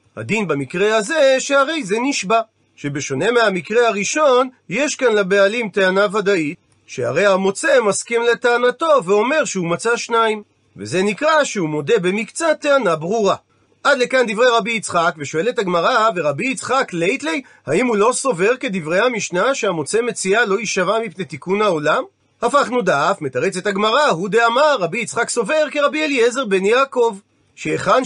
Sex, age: male, 40-59